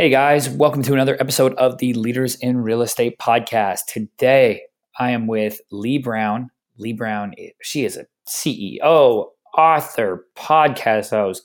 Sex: male